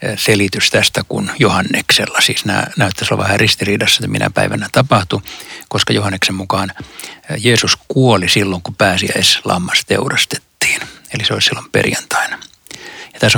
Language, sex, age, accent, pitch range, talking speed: Finnish, male, 60-79, native, 95-120 Hz, 135 wpm